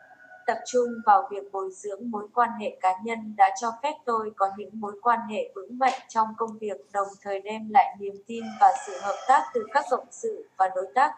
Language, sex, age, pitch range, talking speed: Vietnamese, female, 20-39, 205-260 Hz, 225 wpm